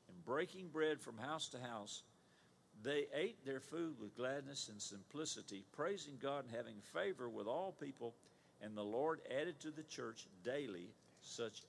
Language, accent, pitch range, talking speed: English, American, 110-150 Hz, 160 wpm